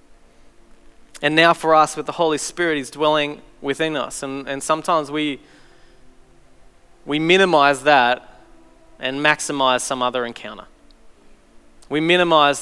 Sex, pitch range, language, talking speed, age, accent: male, 145-185 Hz, English, 125 wpm, 20-39, Australian